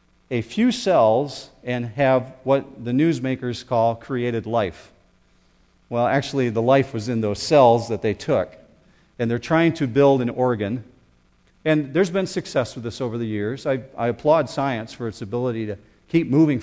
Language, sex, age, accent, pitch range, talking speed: English, male, 50-69, American, 110-145 Hz, 175 wpm